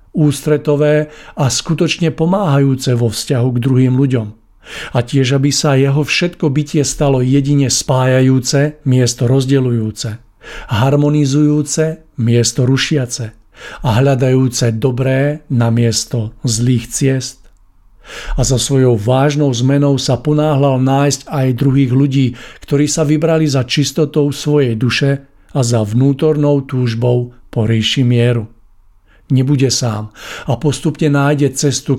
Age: 50-69